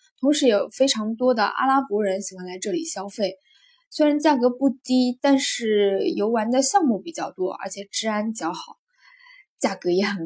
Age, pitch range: 10-29, 210-285 Hz